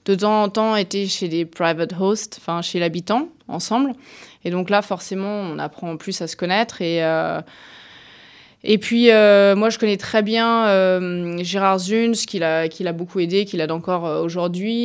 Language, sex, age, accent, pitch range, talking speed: French, female, 20-39, French, 170-215 Hz, 190 wpm